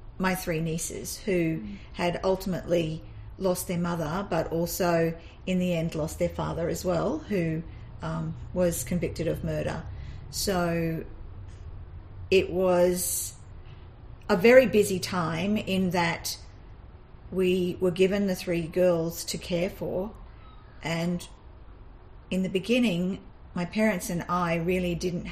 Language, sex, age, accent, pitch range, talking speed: English, female, 50-69, Australian, 150-185 Hz, 125 wpm